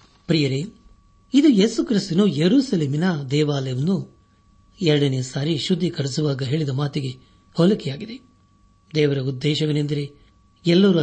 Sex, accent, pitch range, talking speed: male, native, 125-170 Hz, 75 wpm